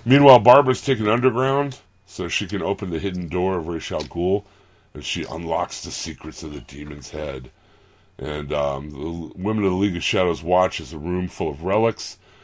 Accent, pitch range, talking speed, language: American, 75-100 Hz, 190 wpm, English